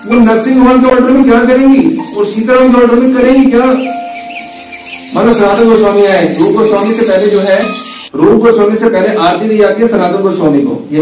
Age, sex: 50-69, male